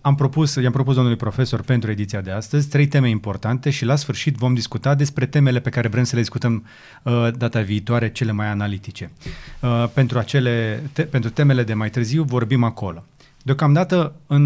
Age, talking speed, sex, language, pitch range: 30-49, 170 wpm, male, Romanian, 110-140 Hz